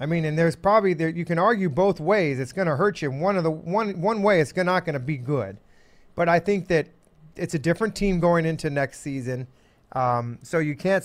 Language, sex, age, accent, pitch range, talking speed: English, male, 40-59, American, 145-180 Hz, 245 wpm